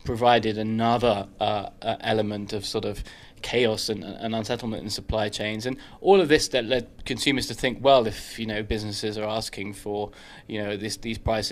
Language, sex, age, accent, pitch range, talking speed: English, male, 20-39, British, 105-120 Hz, 190 wpm